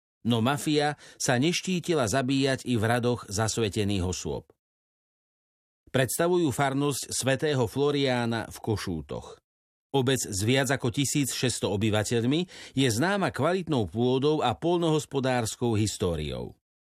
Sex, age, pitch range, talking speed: male, 50-69, 110-145 Hz, 105 wpm